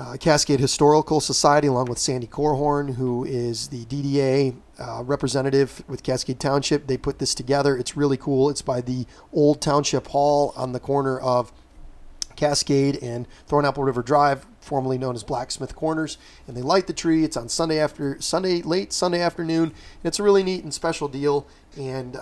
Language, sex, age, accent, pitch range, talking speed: English, male, 30-49, American, 130-160 Hz, 180 wpm